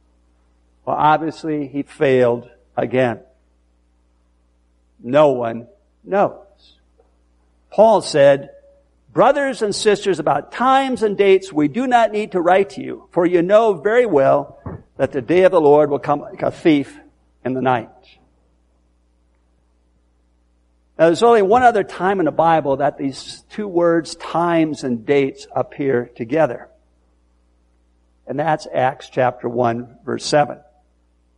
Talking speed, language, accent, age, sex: 130 wpm, English, American, 60-79, male